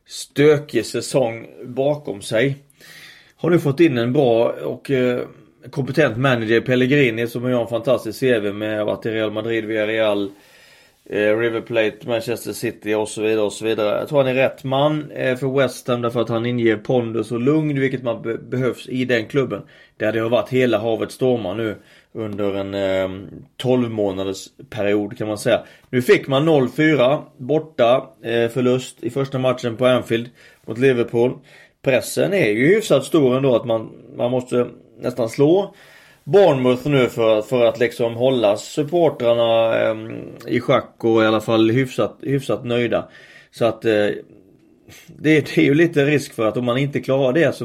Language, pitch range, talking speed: Swedish, 110-135 Hz, 175 wpm